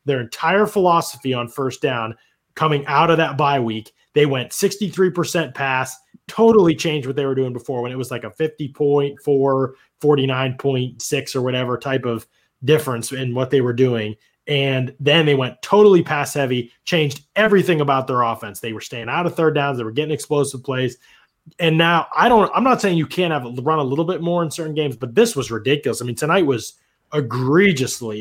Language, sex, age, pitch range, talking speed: English, male, 20-39, 125-160 Hz, 200 wpm